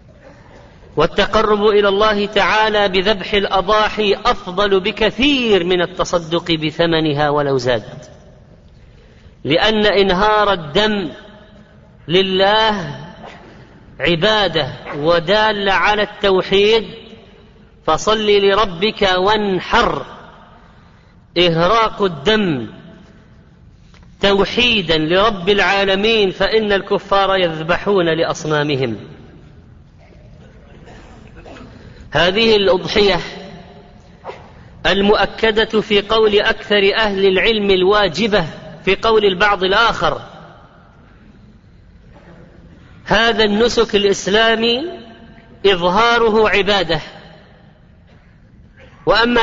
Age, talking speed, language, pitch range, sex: 40-59, 65 wpm, Arabic, 180-215 Hz, female